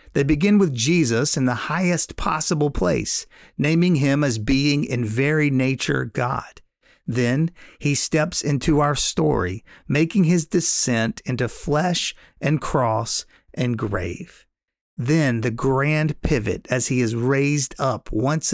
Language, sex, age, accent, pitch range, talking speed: English, male, 40-59, American, 115-150 Hz, 135 wpm